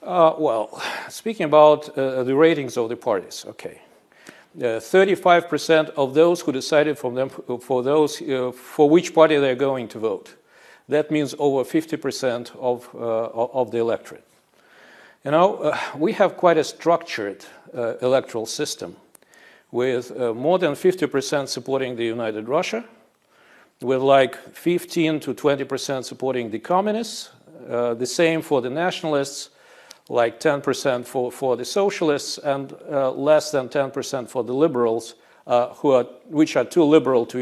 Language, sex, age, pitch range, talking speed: English, male, 50-69, 125-155 Hz, 150 wpm